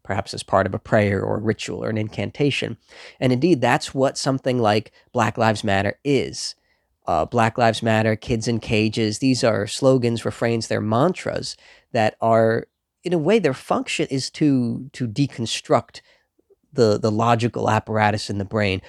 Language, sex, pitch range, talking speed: English, male, 110-135 Hz, 170 wpm